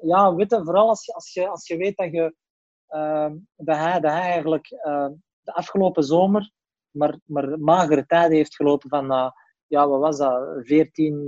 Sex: male